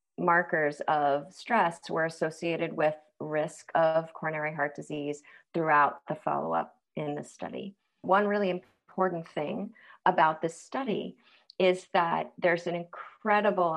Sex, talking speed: female, 125 wpm